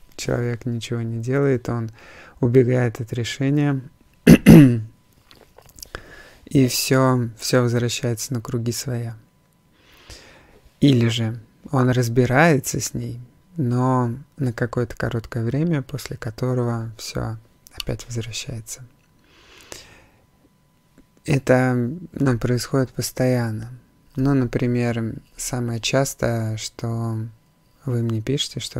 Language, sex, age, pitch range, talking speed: Russian, male, 20-39, 115-135 Hz, 90 wpm